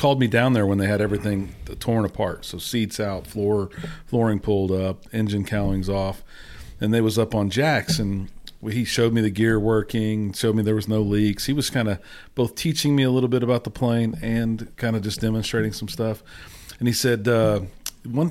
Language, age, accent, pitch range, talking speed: English, 40-59, American, 100-125 Hz, 210 wpm